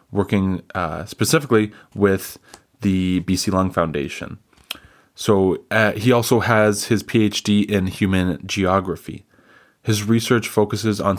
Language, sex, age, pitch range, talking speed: English, male, 20-39, 95-110 Hz, 120 wpm